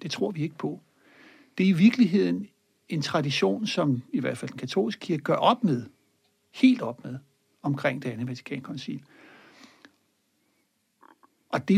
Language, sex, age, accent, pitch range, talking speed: Danish, male, 60-79, native, 145-215 Hz, 155 wpm